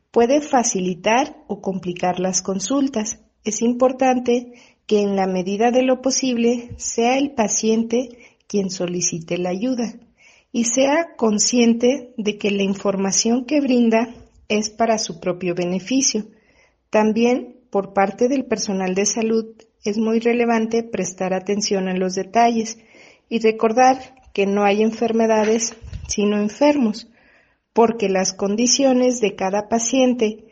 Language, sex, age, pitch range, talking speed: Spanish, female, 40-59, 200-245 Hz, 130 wpm